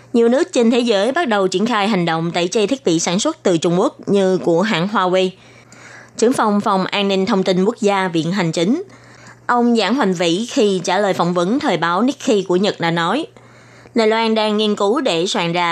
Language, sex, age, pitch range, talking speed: Vietnamese, female, 20-39, 180-235 Hz, 230 wpm